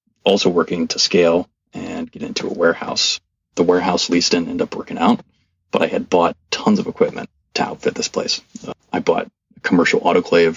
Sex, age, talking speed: male, 30-49, 195 wpm